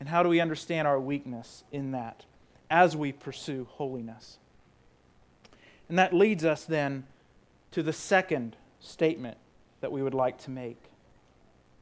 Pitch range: 120-185 Hz